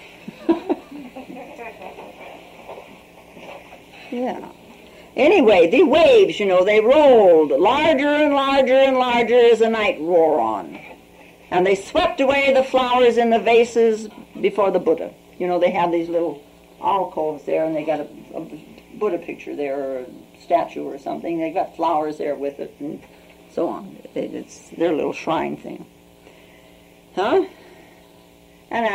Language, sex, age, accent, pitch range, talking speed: English, female, 60-79, American, 165-260 Hz, 140 wpm